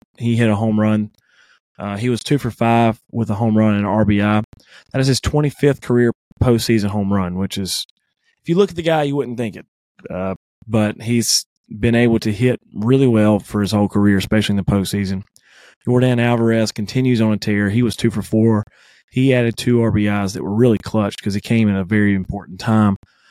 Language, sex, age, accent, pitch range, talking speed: English, male, 20-39, American, 100-120 Hz, 210 wpm